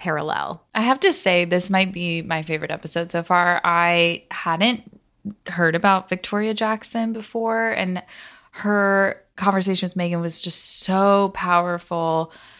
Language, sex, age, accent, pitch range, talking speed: English, female, 20-39, American, 175-205 Hz, 140 wpm